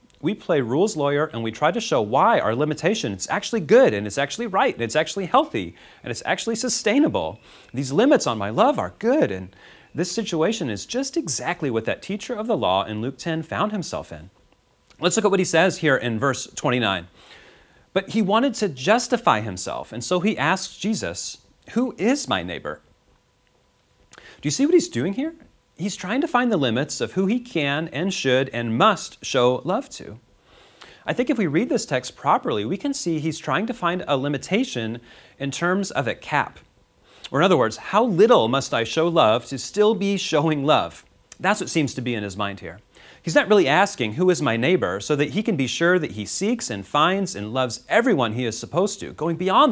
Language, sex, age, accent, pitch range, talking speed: English, male, 30-49, American, 130-210 Hz, 210 wpm